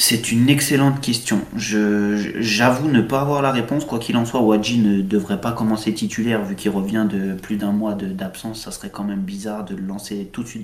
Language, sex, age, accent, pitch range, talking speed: French, male, 30-49, French, 105-120 Hz, 220 wpm